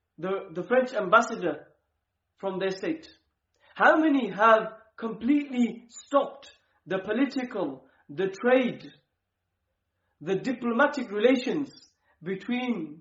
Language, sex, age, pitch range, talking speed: English, male, 40-59, 145-230 Hz, 90 wpm